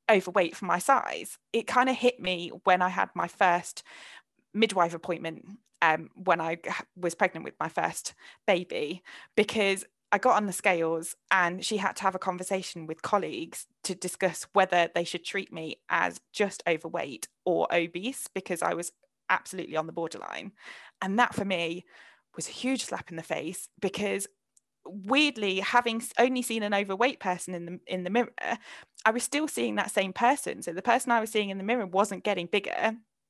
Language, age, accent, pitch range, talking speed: English, 20-39, British, 180-255 Hz, 180 wpm